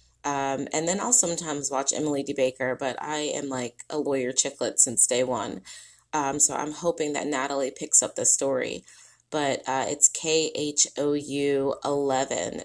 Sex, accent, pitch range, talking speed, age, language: female, American, 130-175 Hz, 155 wpm, 30-49, English